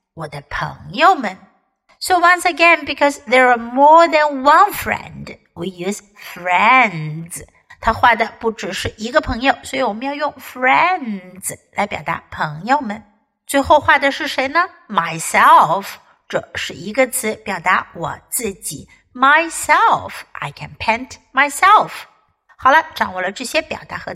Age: 60-79